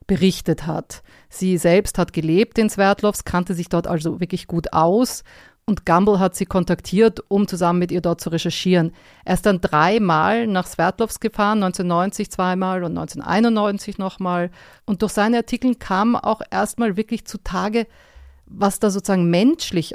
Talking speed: 160 wpm